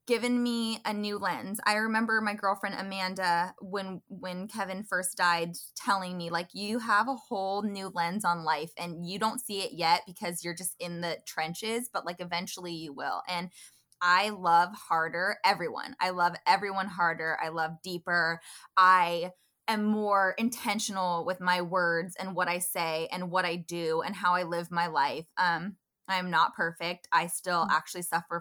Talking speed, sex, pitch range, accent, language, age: 175 wpm, female, 170-200 Hz, American, English, 20-39